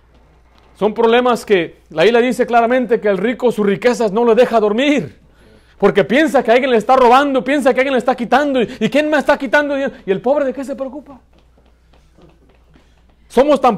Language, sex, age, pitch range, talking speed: Spanish, male, 40-59, 160-245 Hz, 185 wpm